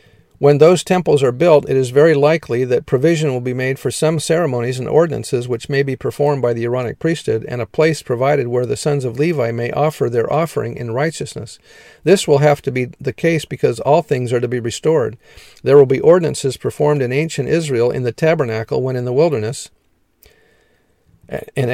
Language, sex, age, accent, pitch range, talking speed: English, male, 50-69, American, 125-150 Hz, 200 wpm